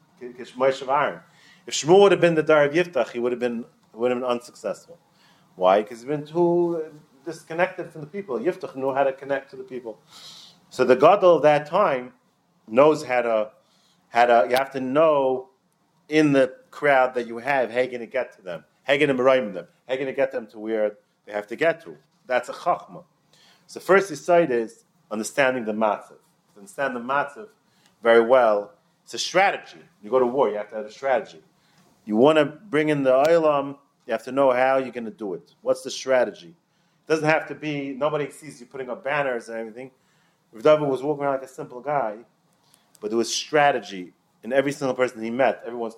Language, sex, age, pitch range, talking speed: English, male, 40-59, 120-155 Hz, 215 wpm